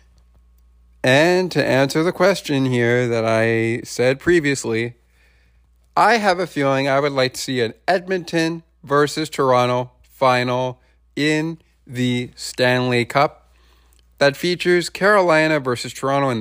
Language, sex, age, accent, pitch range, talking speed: English, male, 40-59, American, 110-155 Hz, 125 wpm